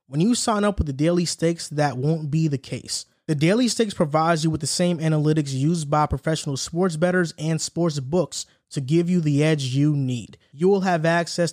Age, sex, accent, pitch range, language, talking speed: 20-39, male, American, 145-175 Hz, English, 215 wpm